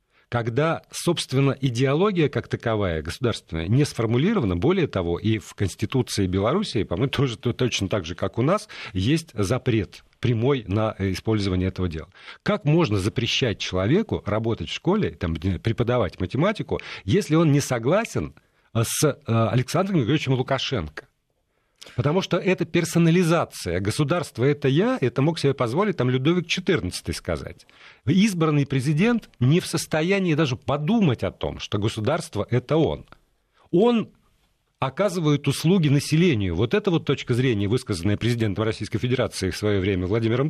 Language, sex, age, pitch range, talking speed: Russian, male, 40-59, 105-155 Hz, 135 wpm